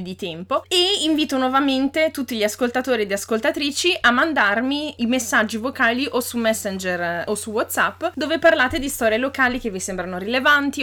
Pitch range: 200-265 Hz